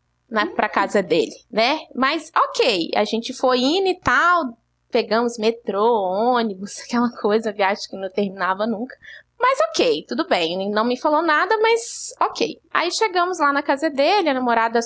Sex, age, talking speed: female, 20-39, 160 wpm